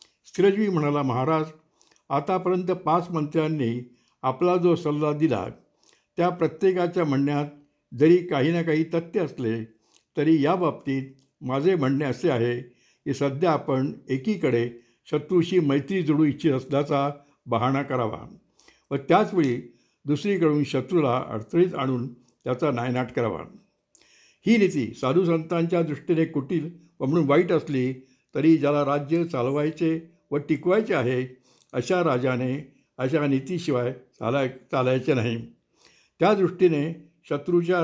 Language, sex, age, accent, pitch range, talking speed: Marathi, male, 60-79, native, 135-165 Hz, 110 wpm